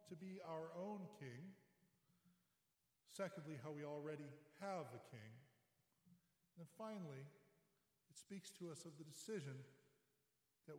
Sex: male